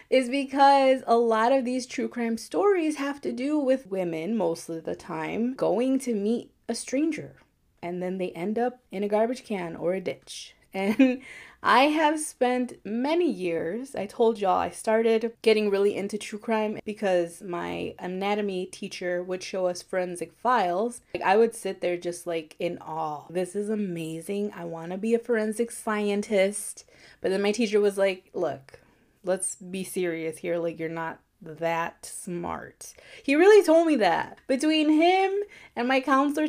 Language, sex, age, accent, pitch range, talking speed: English, female, 20-39, American, 185-255 Hz, 170 wpm